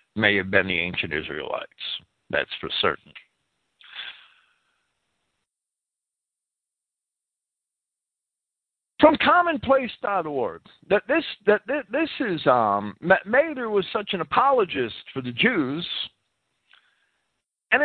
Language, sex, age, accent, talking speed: English, male, 50-69, American, 85 wpm